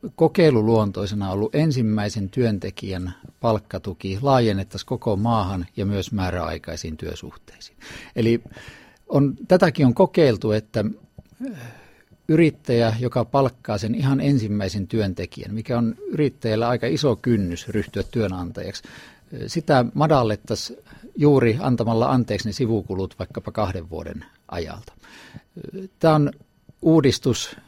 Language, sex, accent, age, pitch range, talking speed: Finnish, male, native, 50-69, 100-135 Hz, 100 wpm